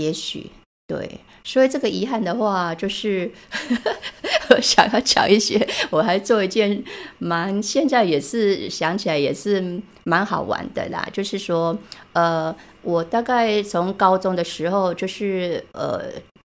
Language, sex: Chinese, female